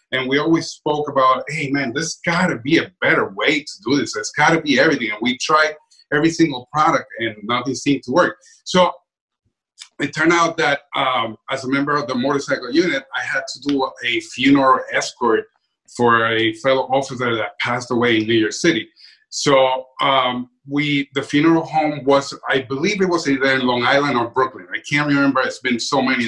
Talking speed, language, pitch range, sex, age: 205 wpm, English, 130-160 Hz, male, 30-49